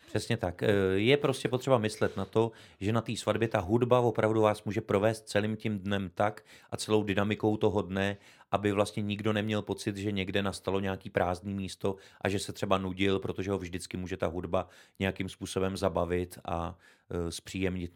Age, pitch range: 30-49, 95-120 Hz